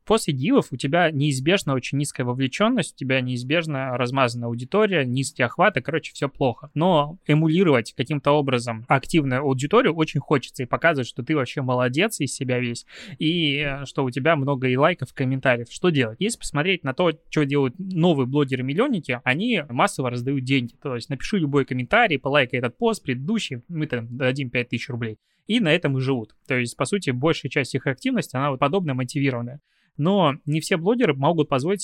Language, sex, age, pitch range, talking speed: Russian, male, 20-39, 130-165 Hz, 175 wpm